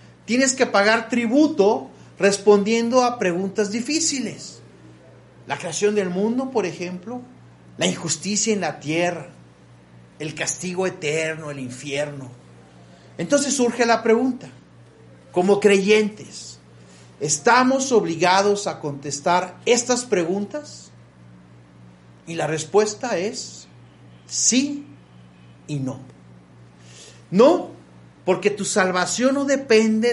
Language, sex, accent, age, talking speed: Spanish, male, Mexican, 40-59, 100 wpm